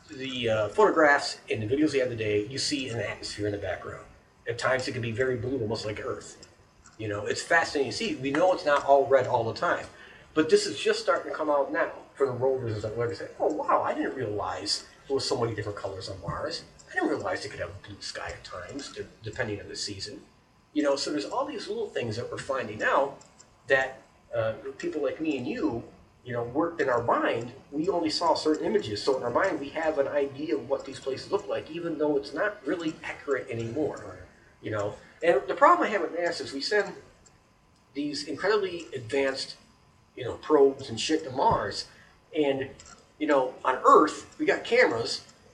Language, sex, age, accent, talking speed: English, male, 40-59, American, 215 wpm